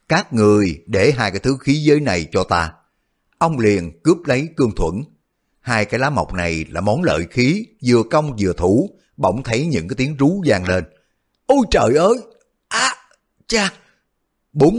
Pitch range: 95-135 Hz